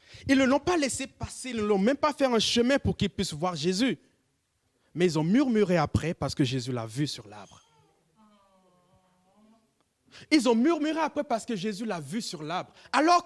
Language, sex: French, male